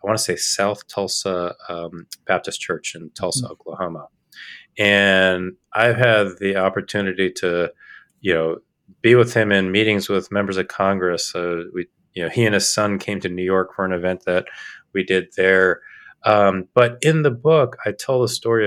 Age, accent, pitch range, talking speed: 30-49, American, 95-115 Hz, 185 wpm